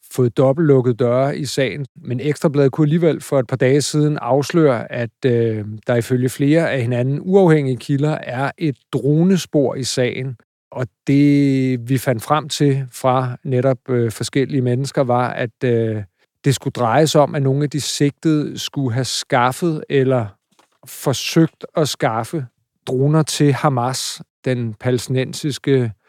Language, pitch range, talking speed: Danish, 125-145 Hz, 150 wpm